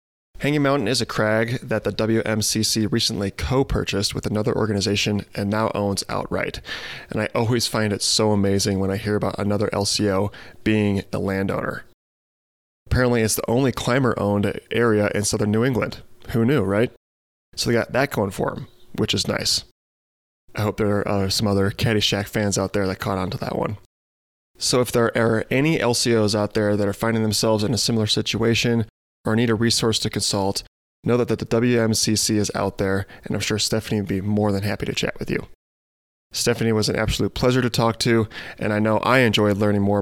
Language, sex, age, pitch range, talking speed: English, male, 20-39, 100-115 Hz, 195 wpm